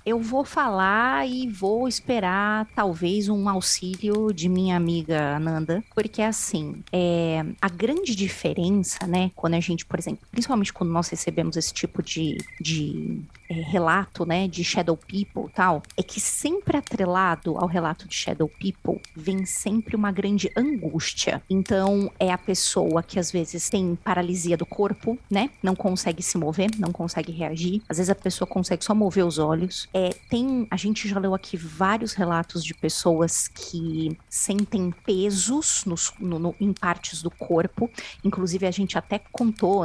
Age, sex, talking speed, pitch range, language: 20-39, female, 155 wpm, 170-210 Hz, Portuguese